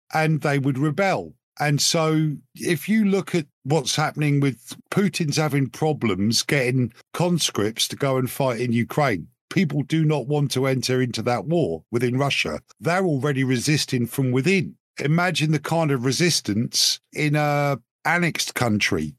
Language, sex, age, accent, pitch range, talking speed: English, male, 50-69, British, 125-150 Hz, 155 wpm